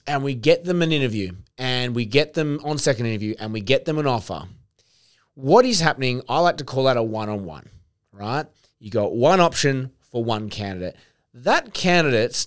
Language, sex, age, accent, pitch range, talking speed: English, male, 30-49, Australian, 110-145 Hz, 190 wpm